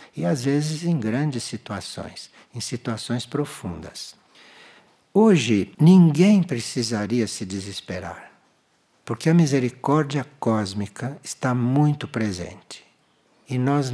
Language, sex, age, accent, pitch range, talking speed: Portuguese, male, 60-79, Brazilian, 110-155 Hz, 100 wpm